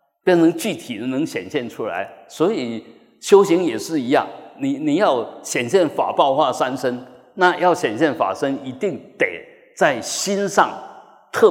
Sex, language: male, Chinese